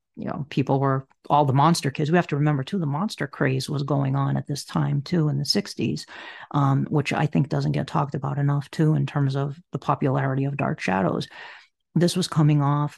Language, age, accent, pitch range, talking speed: English, 40-59, American, 145-165 Hz, 220 wpm